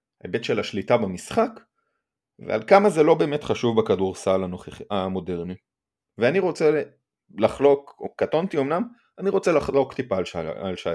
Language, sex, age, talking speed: Hebrew, male, 30-49, 130 wpm